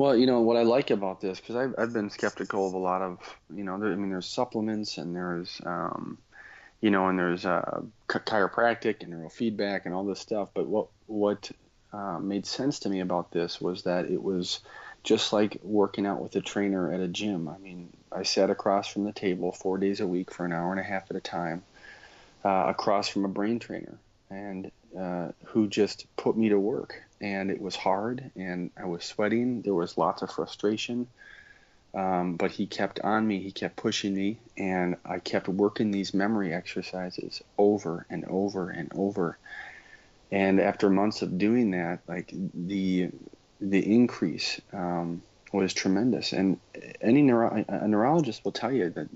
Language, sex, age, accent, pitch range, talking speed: English, male, 30-49, American, 90-105 Hz, 190 wpm